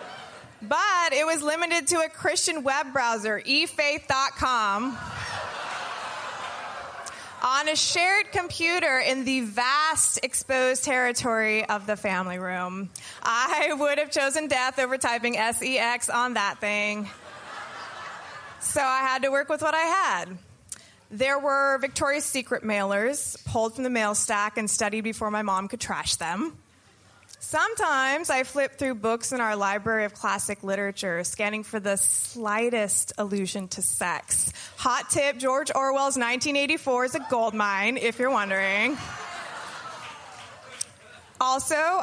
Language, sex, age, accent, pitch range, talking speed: English, female, 20-39, American, 215-295 Hz, 130 wpm